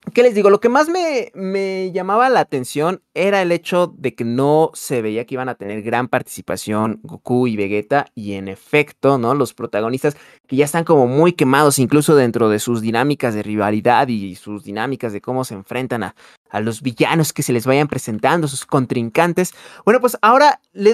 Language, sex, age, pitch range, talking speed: Spanish, male, 20-39, 130-190 Hz, 200 wpm